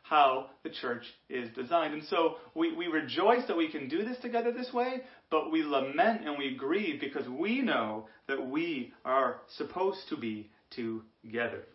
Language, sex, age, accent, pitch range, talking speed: English, male, 30-49, American, 140-230 Hz, 175 wpm